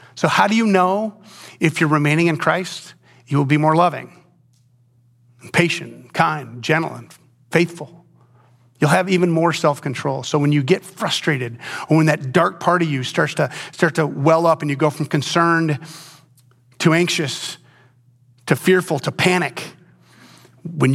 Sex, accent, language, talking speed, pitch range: male, American, English, 155 wpm, 120-165 Hz